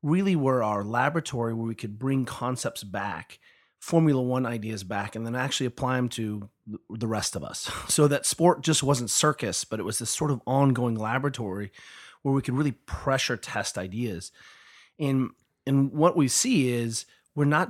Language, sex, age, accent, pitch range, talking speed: English, male, 30-49, American, 115-145 Hz, 180 wpm